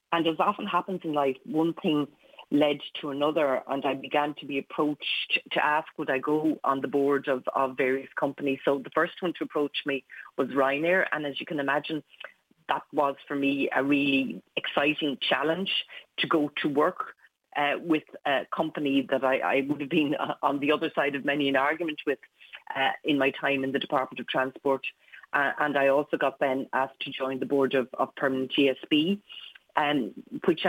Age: 30-49